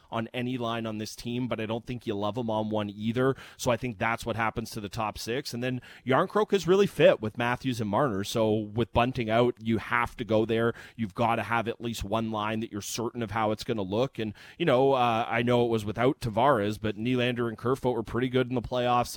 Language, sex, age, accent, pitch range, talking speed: English, male, 30-49, American, 105-125 Hz, 255 wpm